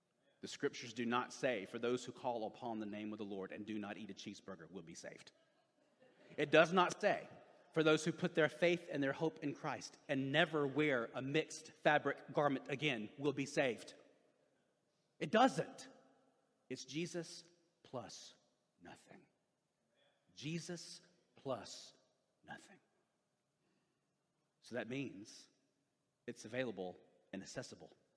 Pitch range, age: 140-175 Hz, 40-59